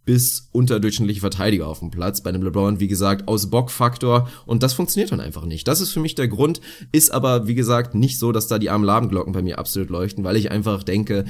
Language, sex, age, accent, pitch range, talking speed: German, male, 20-39, German, 100-115 Hz, 230 wpm